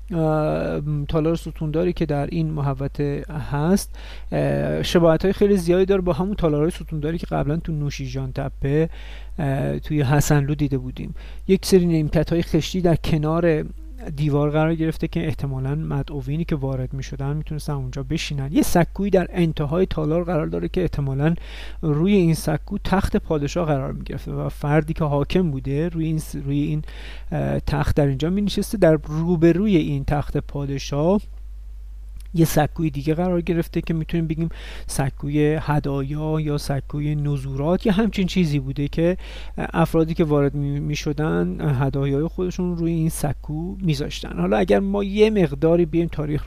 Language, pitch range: Persian, 140-170 Hz